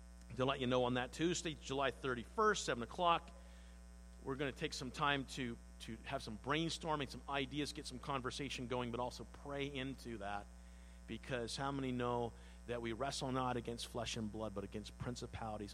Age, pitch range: 50-69, 100-155 Hz